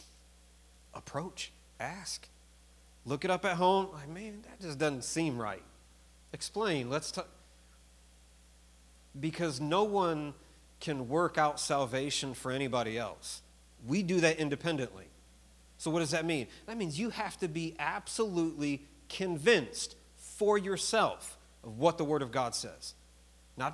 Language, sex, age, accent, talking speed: English, male, 40-59, American, 135 wpm